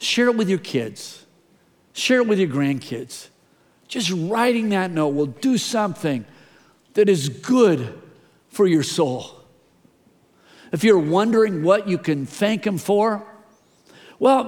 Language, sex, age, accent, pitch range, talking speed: English, male, 50-69, American, 170-225 Hz, 135 wpm